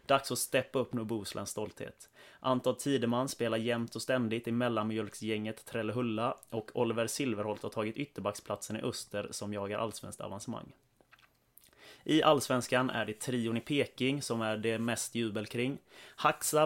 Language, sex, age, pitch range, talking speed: English, male, 30-49, 110-125 Hz, 150 wpm